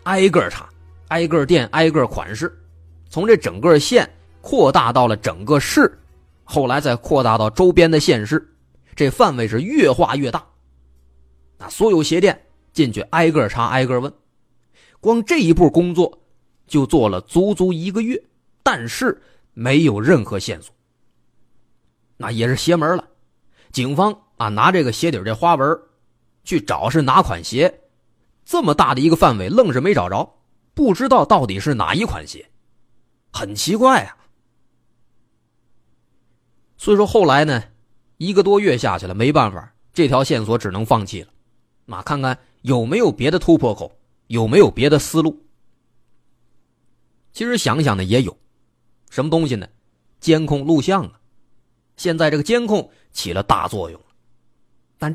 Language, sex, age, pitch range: Chinese, male, 30-49, 110-160 Hz